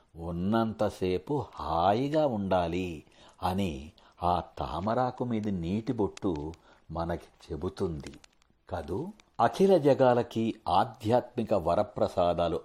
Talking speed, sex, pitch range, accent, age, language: 80 wpm, male, 90-125 Hz, Indian, 60-79, English